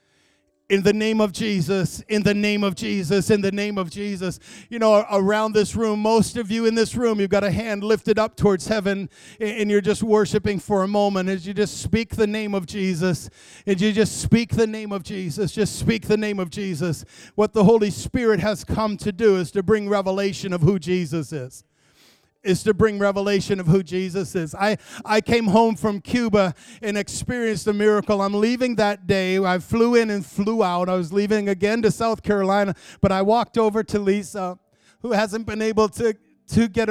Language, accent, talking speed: English, American, 205 wpm